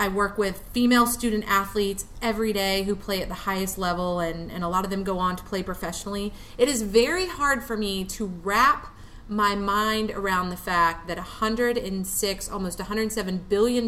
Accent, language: American, English